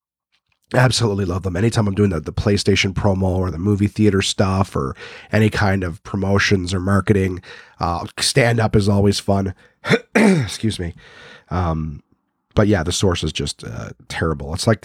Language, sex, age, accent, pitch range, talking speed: English, male, 30-49, American, 95-120 Hz, 160 wpm